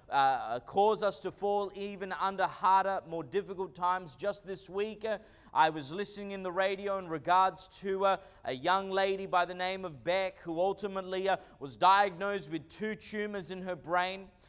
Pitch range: 180-205 Hz